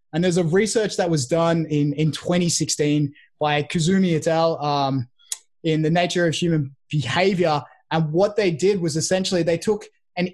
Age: 20-39